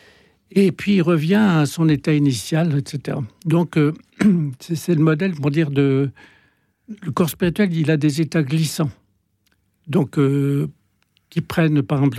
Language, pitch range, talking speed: French, 140-180 Hz, 160 wpm